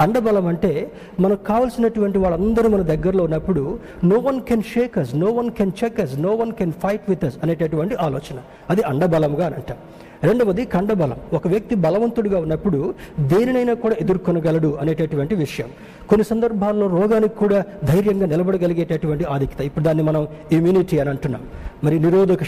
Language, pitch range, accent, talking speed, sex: Telugu, 160-220 Hz, native, 145 wpm, male